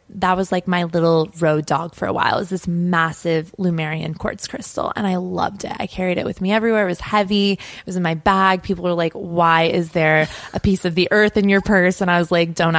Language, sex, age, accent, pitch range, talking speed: English, female, 20-39, American, 185-235 Hz, 255 wpm